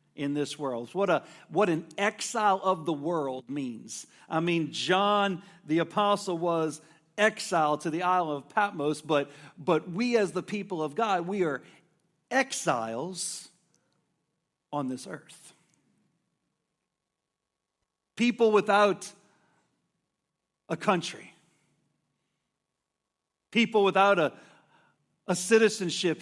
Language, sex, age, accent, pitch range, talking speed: English, male, 50-69, American, 175-220 Hz, 110 wpm